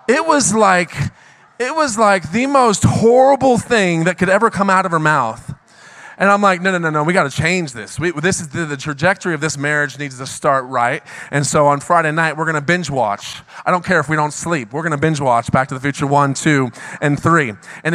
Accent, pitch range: American, 155-200 Hz